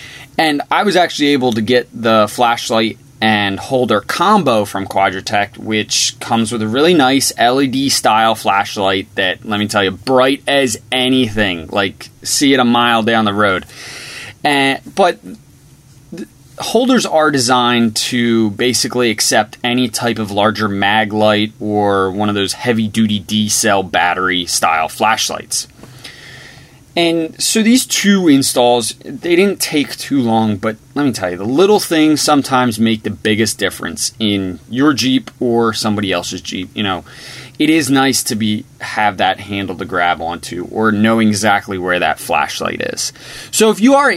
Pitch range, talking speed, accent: 105-135 Hz, 155 wpm, American